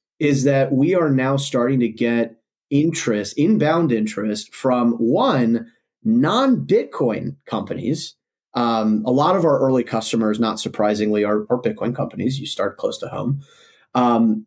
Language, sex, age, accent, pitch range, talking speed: English, male, 30-49, American, 110-135 Hz, 145 wpm